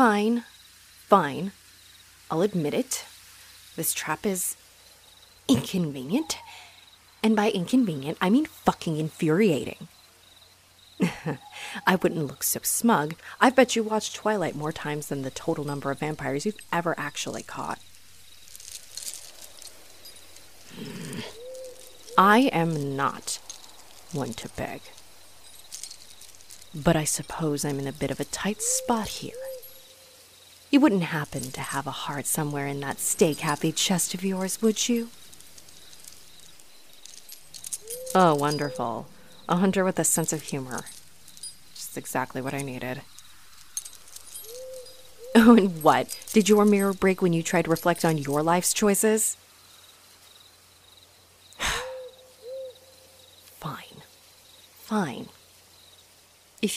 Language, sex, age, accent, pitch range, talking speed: English, female, 30-49, American, 130-220 Hz, 110 wpm